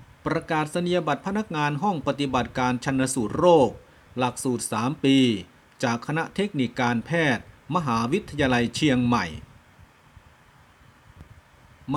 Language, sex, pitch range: Thai, male, 120-160 Hz